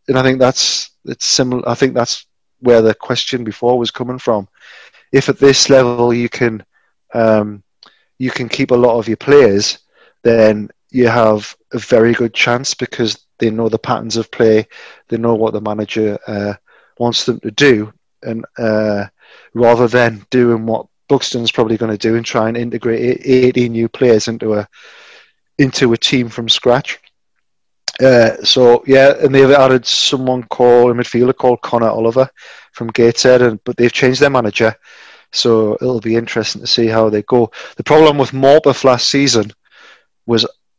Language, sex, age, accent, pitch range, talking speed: English, male, 30-49, British, 110-125 Hz, 175 wpm